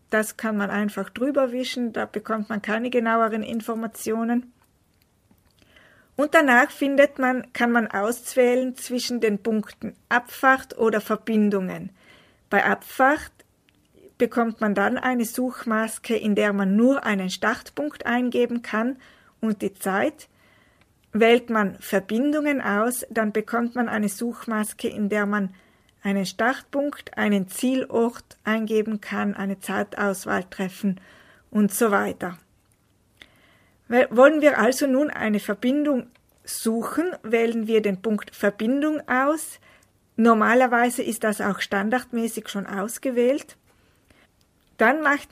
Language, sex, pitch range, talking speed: German, female, 210-255 Hz, 120 wpm